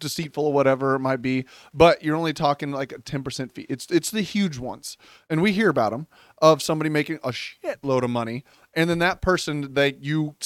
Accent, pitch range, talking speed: American, 140-165 Hz, 210 wpm